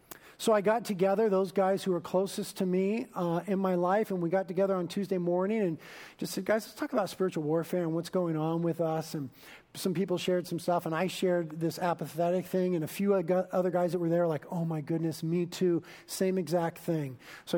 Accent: American